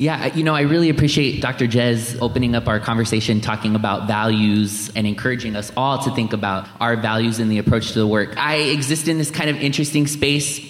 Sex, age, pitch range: male, 20-39, 120-145 Hz